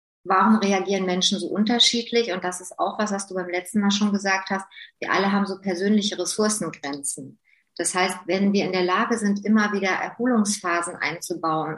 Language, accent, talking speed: German, German, 185 wpm